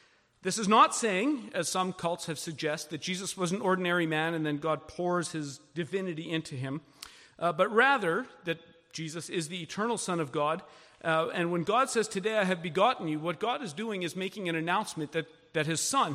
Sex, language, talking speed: male, English, 210 wpm